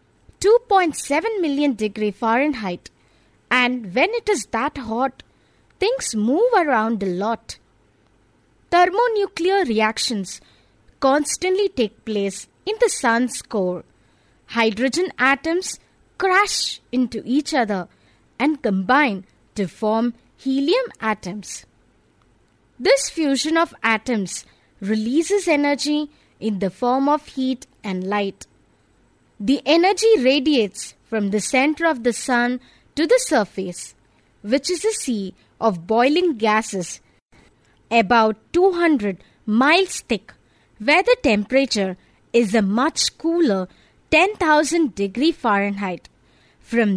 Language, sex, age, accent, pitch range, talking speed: English, female, 20-39, Indian, 210-320 Hz, 105 wpm